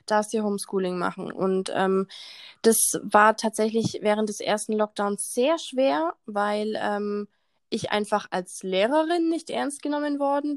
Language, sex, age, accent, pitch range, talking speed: German, female, 20-39, German, 210-255 Hz, 140 wpm